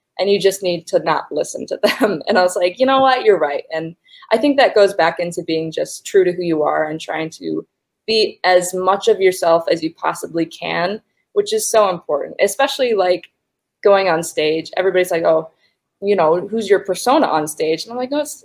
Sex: female